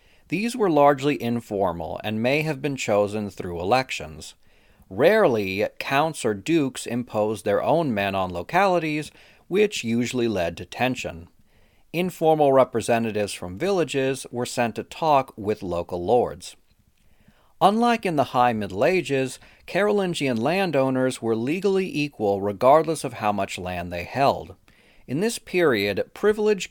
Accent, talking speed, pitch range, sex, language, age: American, 135 wpm, 100-140 Hz, male, English, 40-59